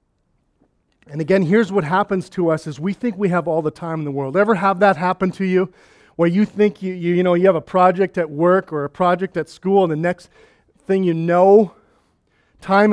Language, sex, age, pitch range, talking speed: English, male, 40-59, 165-210 Hz, 225 wpm